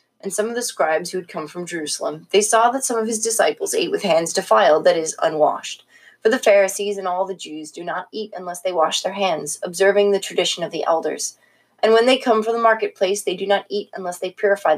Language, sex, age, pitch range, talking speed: English, female, 30-49, 175-220 Hz, 240 wpm